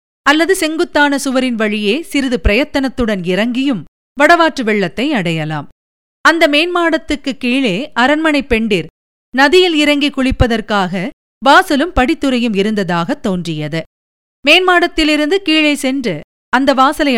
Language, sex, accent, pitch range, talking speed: Tamil, female, native, 205-295 Hz, 95 wpm